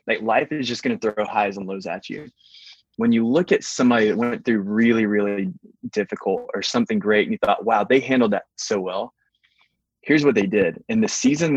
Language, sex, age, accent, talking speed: English, male, 20-39, American, 220 wpm